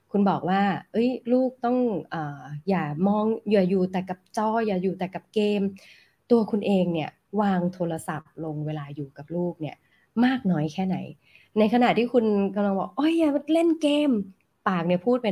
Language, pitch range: Thai, 155-195 Hz